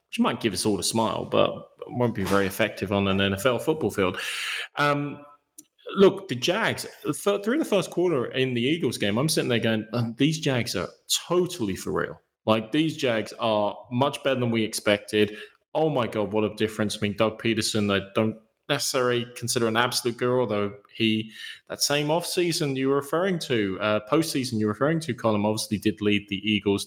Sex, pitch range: male, 100-130 Hz